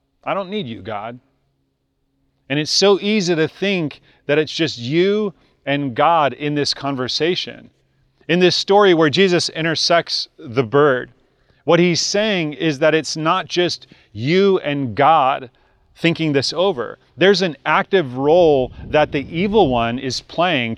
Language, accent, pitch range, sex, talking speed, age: English, American, 135-165 Hz, male, 150 wpm, 30-49